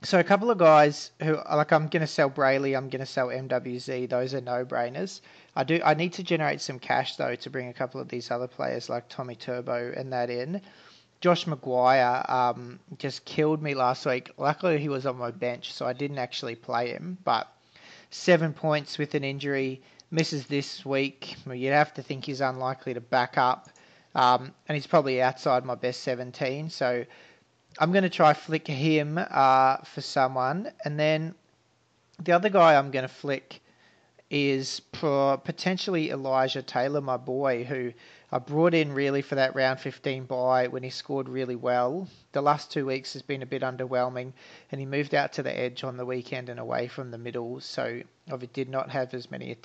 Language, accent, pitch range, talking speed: English, Australian, 125-150 Hz, 190 wpm